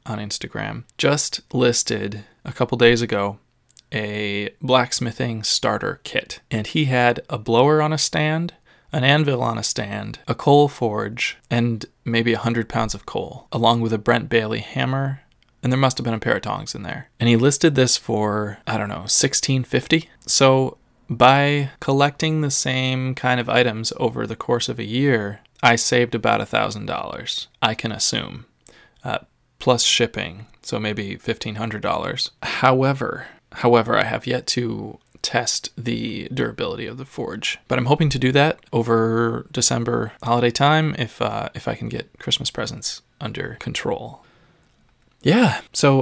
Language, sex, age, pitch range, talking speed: English, male, 20-39, 115-135 Hz, 160 wpm